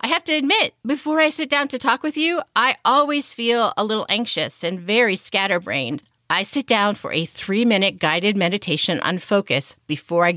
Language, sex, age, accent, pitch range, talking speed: English, female, 40-59, American, 185-260 Hz, 190 wpm